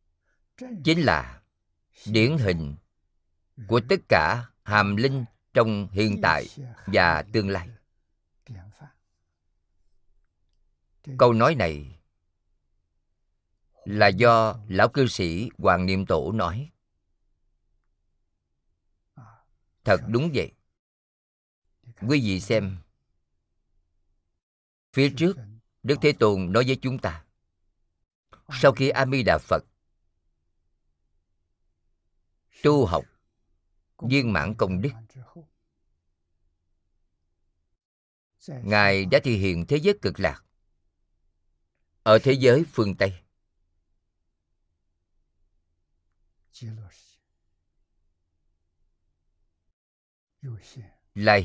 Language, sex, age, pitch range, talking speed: Vietnamese, male, 50-69, 80-110 Hz, 80 wpm